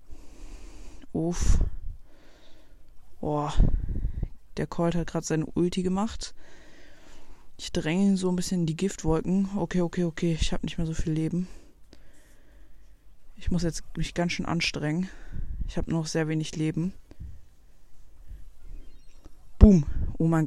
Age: 20-39